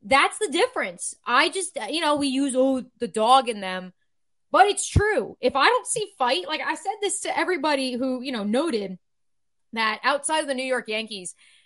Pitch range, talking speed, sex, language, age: 225-290 Hz, 195 wpm, female, English, 20-39